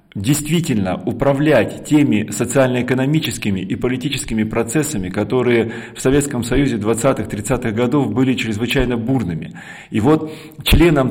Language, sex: Russian, male